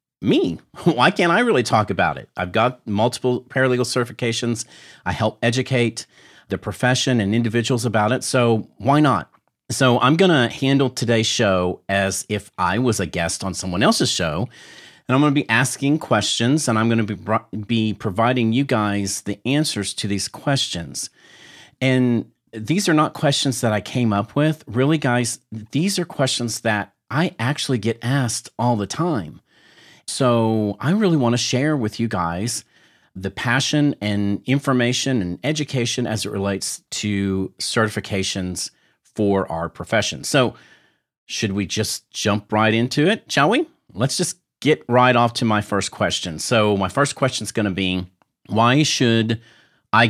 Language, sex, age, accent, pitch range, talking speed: English, male, 40-59, American, 100-130 Hz, 165 wpm